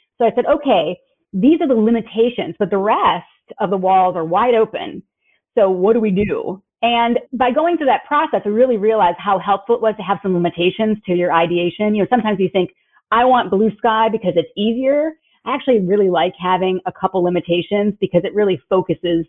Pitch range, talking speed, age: 180-225 Hz, 205 wpm, 30-49